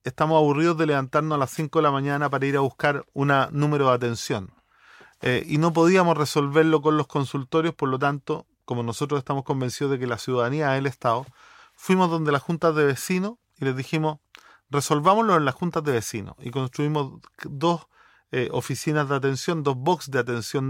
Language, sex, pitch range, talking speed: English, male, 130-165 Hz, 190 wpm